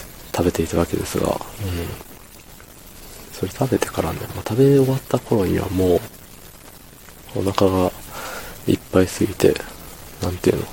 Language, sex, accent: Japanese, male, native